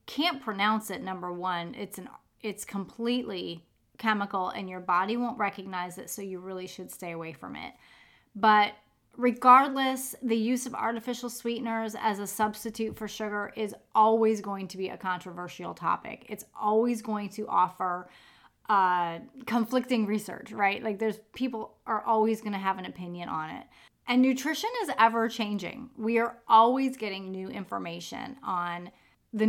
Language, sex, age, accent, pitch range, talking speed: English, female, 30-49, American, 195-245 Hz, 155 wpm